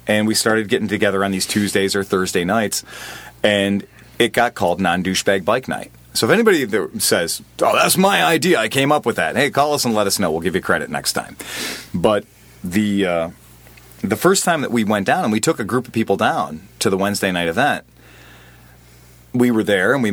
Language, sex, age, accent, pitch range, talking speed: English, male, 30-49, American, 85-115 Hz, 220 wpm